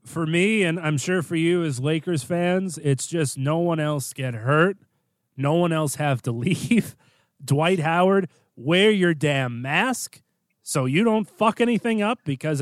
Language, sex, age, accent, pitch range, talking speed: English, male, 30-49, American, 145-190 Hz, 170 wpm